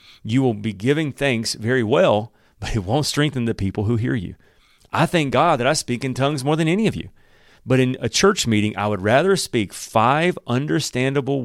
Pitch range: 105-135 Hz